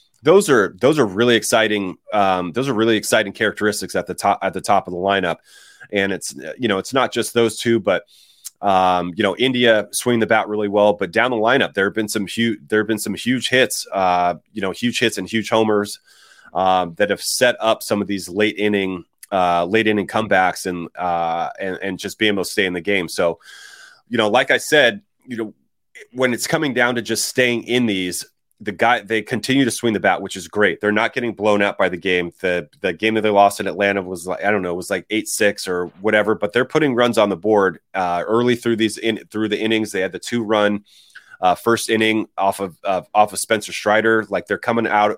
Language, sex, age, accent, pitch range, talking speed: English, male, 30-49, American, 95-115 Hz, 240 wpm